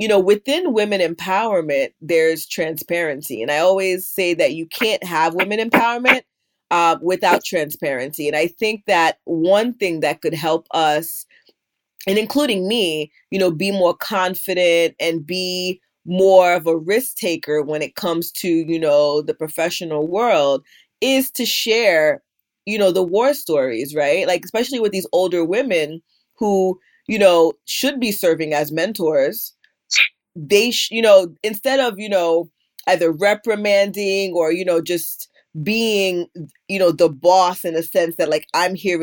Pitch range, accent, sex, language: 165-220 Hz, American, female, English